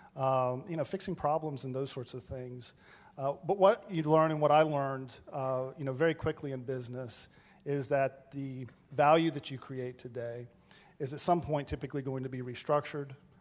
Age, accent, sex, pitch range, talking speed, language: 40-59, American, male, 130-150 Hz, 190 wpm, English